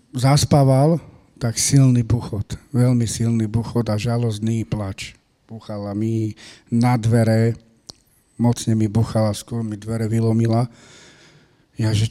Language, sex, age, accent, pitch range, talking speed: English, male, 40-59, Czech, 115-135 Hz, 110 wpm